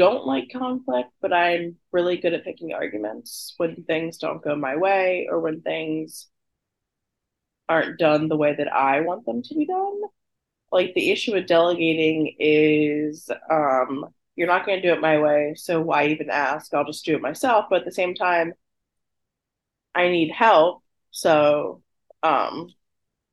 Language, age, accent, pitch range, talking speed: English, 20-39, American, 150-195 Hz, 165 wpm